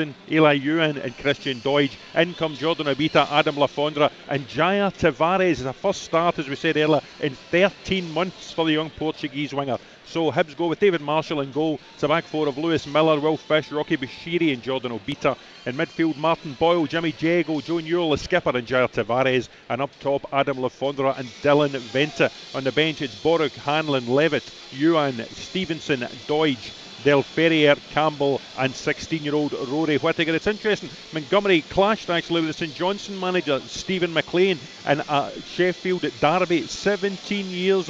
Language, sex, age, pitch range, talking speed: English, male, 40-59, 145-175 Hz, 175 wpm